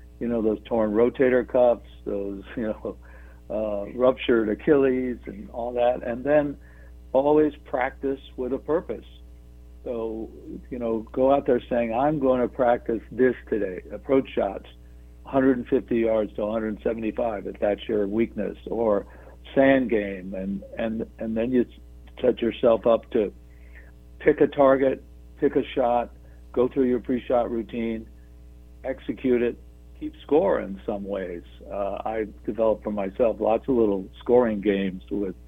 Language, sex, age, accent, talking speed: English, male, 60-79, American, 145 wpm